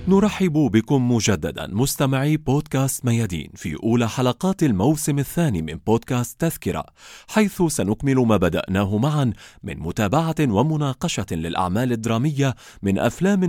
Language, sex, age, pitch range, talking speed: Arabic, male, 30-49, 105-145 Hz, 115 wpm